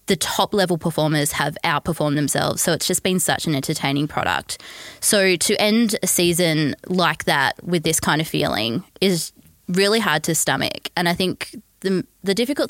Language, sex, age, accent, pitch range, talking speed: English, female, 20-39, Australian, 155-190 Hz, 175 wpm